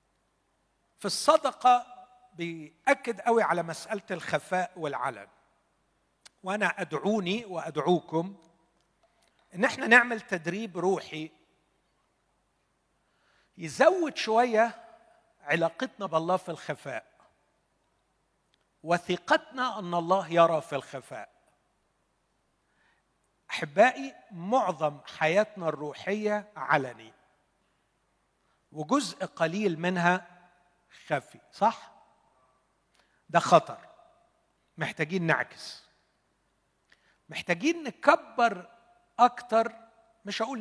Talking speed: 70 wpm